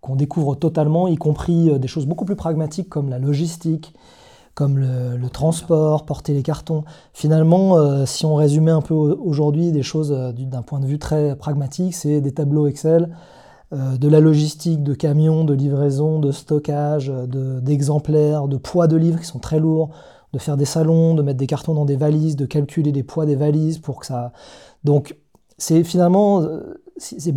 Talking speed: 185 wpm